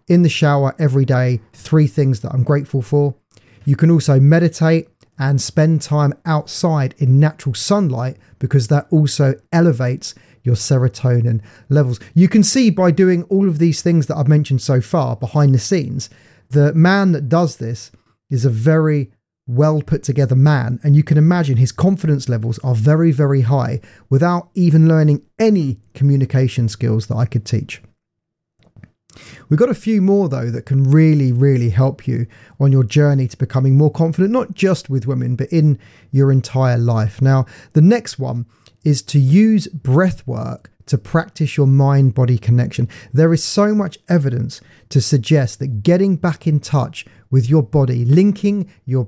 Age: 30-49